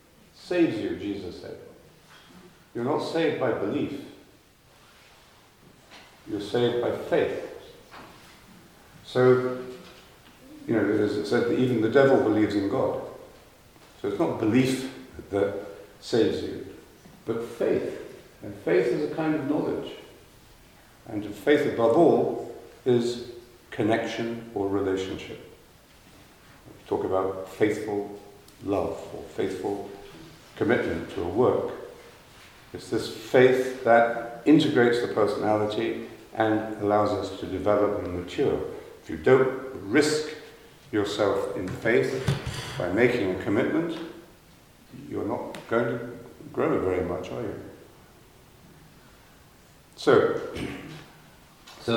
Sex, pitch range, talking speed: male, 105-170 Hz, 110 wpm